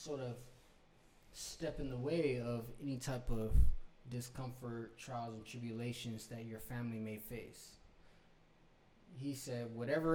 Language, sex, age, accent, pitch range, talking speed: English, male, 20-39, American, 115-140 Hz, 130 wpm